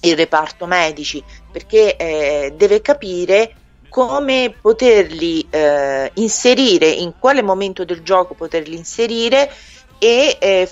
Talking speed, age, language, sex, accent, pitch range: 110 wpm, 40-59, Italian, female, native, 165-205 Hz